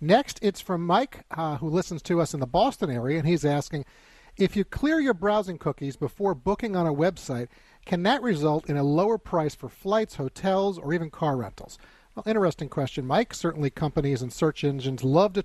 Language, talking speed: English, 200 wpm